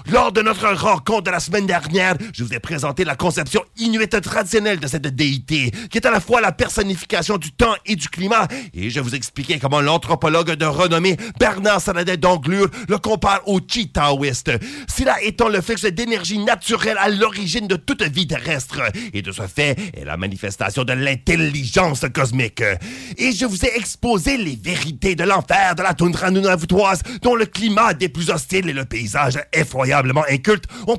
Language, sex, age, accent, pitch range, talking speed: English, male, 30-49, French, 145-215 Hz, 180 wpm